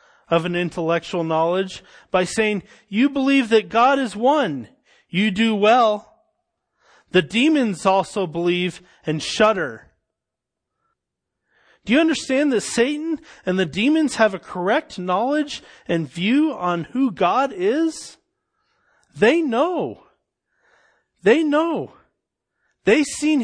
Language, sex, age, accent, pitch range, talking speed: English, male, 30-49, American, 190-285 Hz, 115 wpm